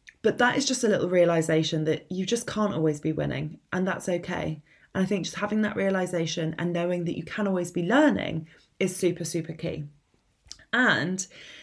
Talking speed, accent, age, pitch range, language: 190 wpm, British, 20-39, 170-240 Hz, English